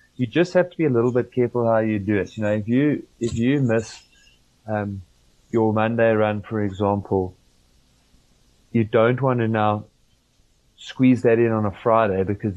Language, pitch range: English, 105-120 Hz